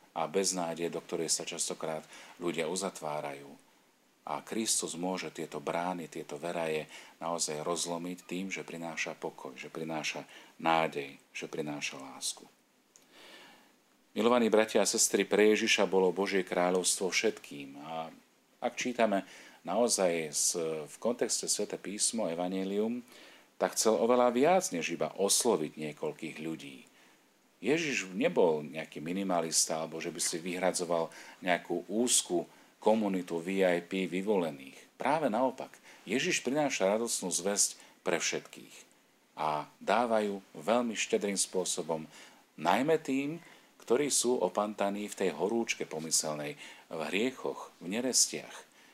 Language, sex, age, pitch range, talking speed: Slovak, male, 40-59, 80-100 Hz, 120 wpm